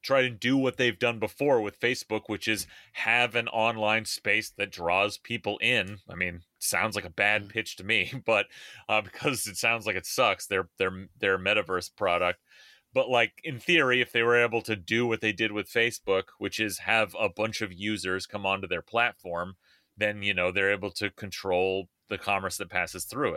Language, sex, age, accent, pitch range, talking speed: English, male, 30-49, American, 100-120 Hz, 205 wpm